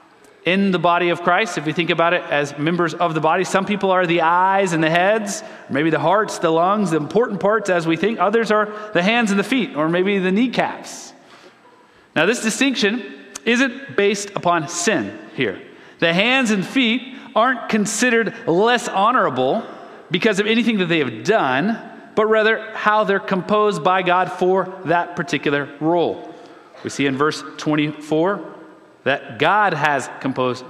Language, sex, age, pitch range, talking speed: English, male, 30-49, 175-220 Hz, 170 wpm